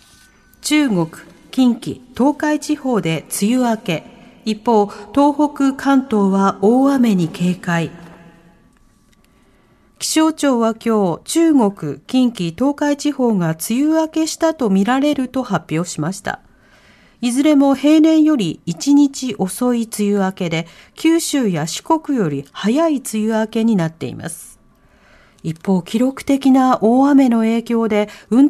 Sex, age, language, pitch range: female, 40-59, Japanese, 190-275 Hz